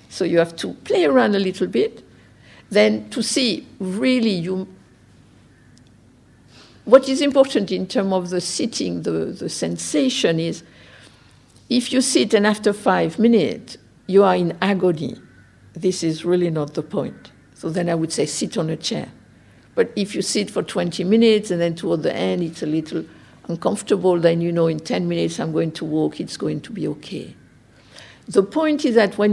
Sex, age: female, 60-79